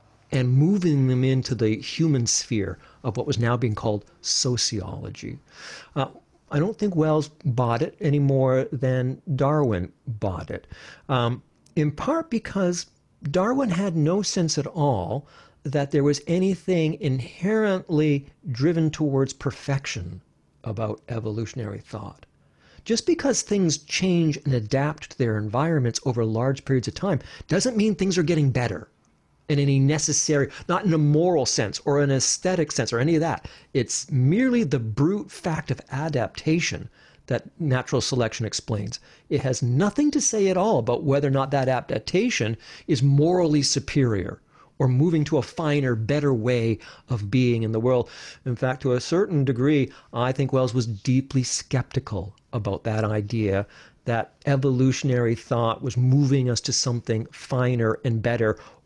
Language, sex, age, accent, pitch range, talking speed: English, male, 50-69, American, 120-155 Hz, 150 wpm